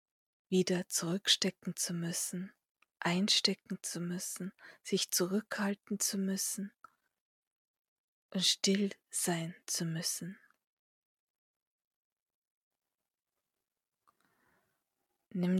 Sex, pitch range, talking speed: female, 175-200 Hz, 65 wpm